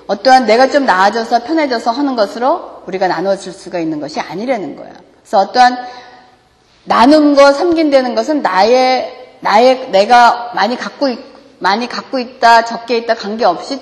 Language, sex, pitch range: Korean, female, 185-280 Hz